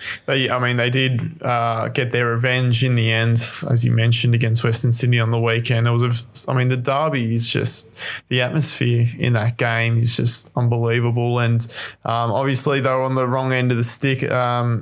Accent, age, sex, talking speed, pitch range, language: Australian, 20-39, male, 205 wpm, 120-130 Hz, English